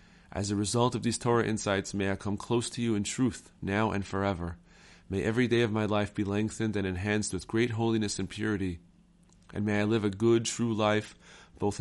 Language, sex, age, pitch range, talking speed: English, male, 30-49, 95-110 Hz, 215 wpm